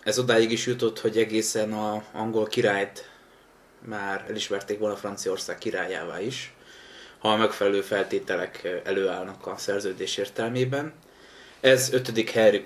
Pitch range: 105-135 Hz